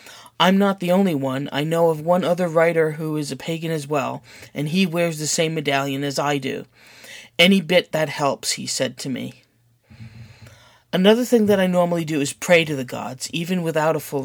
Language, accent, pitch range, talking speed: English, American, 140-185 Hz, 205 wpm